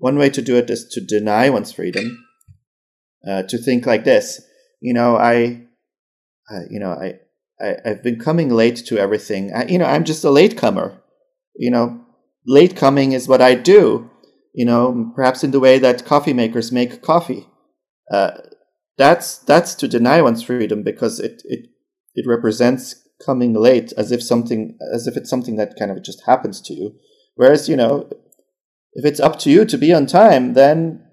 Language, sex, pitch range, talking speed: English, male, 115-140 Hz, 185 wpm